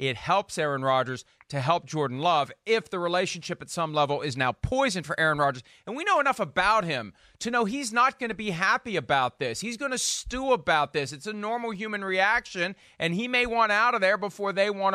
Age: 40-59